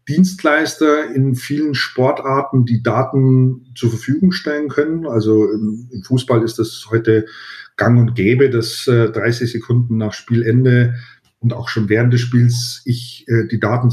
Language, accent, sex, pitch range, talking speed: German, German, male, 110-125 Hz, 140 wpm